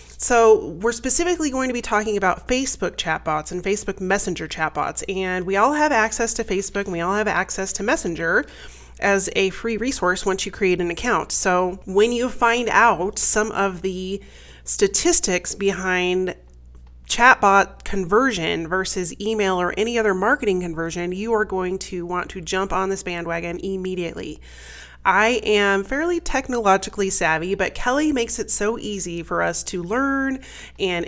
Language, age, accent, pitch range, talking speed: English, 30-49, American, 180-230 Hz, 160 wpm